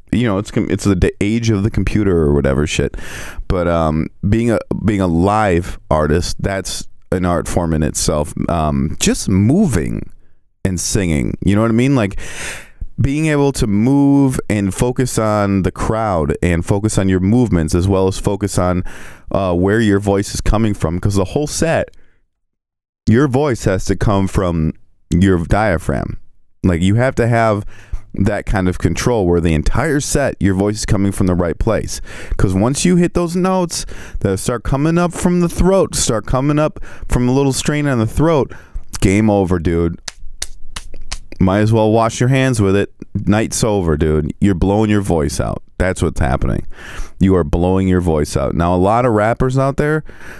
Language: English